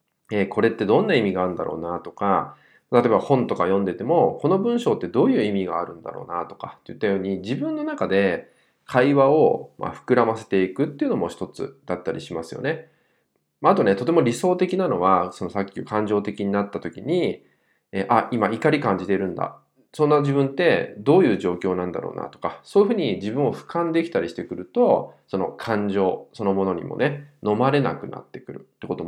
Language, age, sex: Japanese, 20-39, male